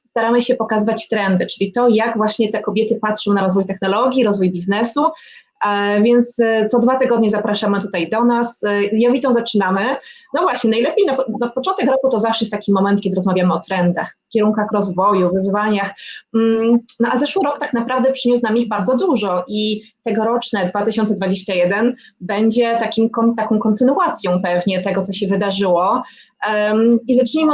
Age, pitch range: 20-39, 205-240 Hz